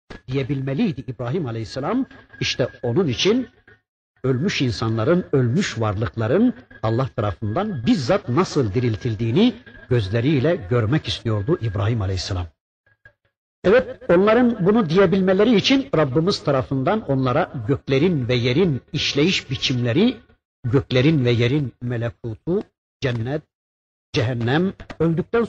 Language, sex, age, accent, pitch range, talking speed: Turkish, male, 60-79, native, 120-170 Hz, 95 wpm